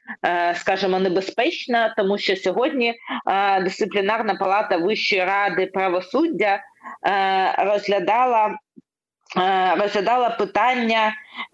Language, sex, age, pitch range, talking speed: Ukrainian, female, 20-39, 190-230 Hz, 70 wpm